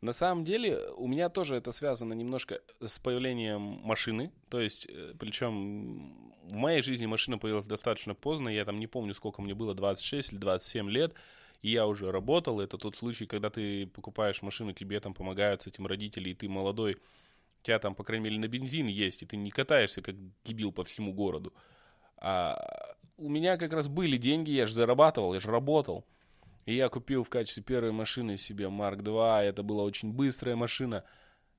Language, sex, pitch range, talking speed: Russian, male, 105-130 Hz, 185 wpm